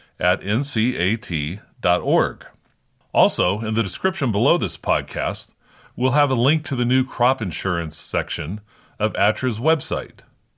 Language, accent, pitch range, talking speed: English, American, 100-130 Hz, 125 wpm